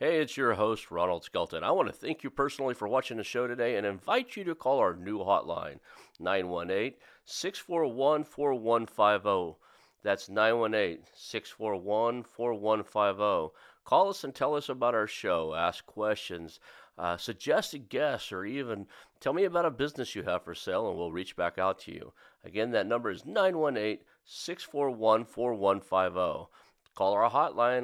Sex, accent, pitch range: male, American, 85-120 Hz